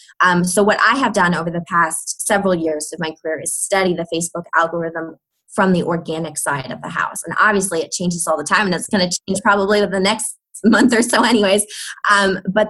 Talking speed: 220 wpm